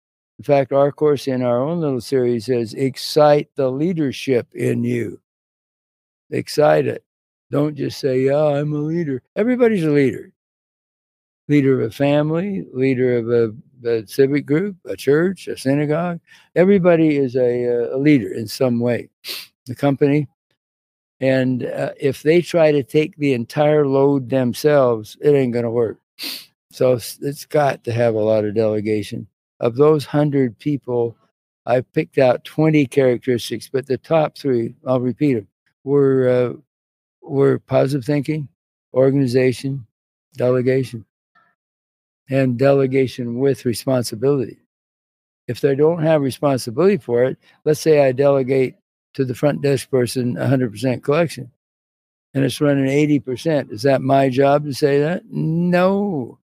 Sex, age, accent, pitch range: male, 60-79, American, 120-145 Hz